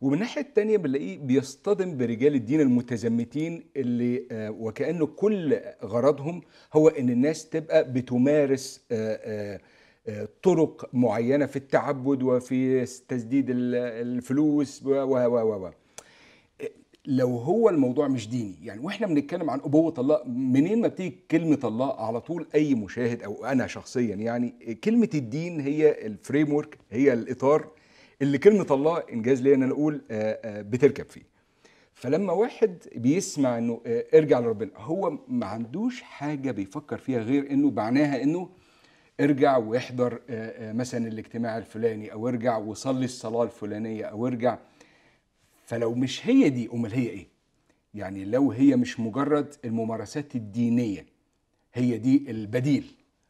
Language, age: Arabic, 50-69